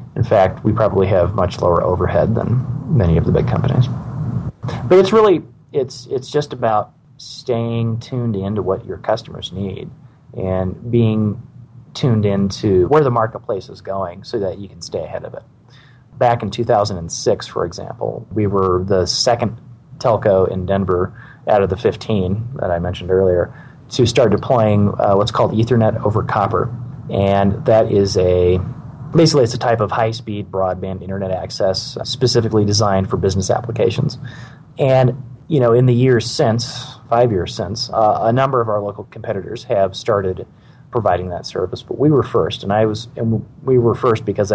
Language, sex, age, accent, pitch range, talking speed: English, male, 30-49, American, 95-125 Hz, 170 wpm